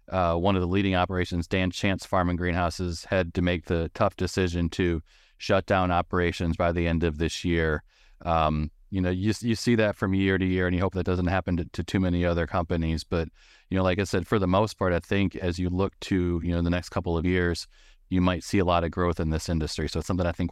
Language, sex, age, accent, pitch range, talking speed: English, male, 30-49, American, 85-100 Hz, 255 wpm